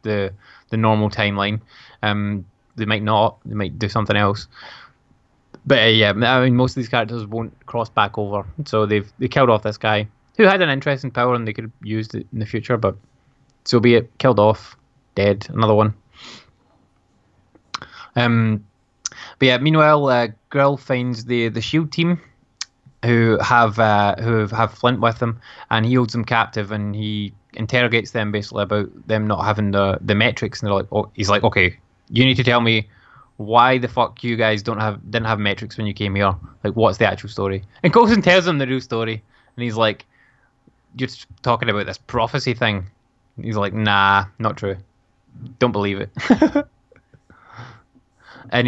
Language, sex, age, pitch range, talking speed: English, male, 20-39, 105-125 Hz, 180 wpm